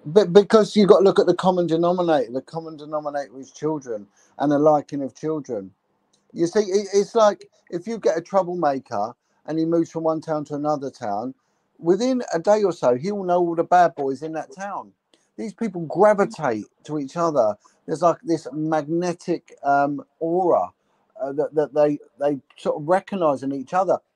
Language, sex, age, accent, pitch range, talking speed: English, male, 50-69, British, 140-175 Hz, 185 wpm